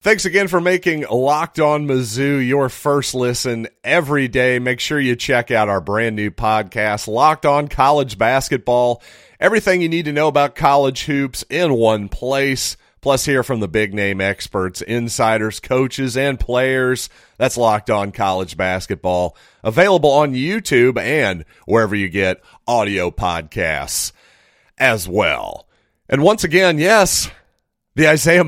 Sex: male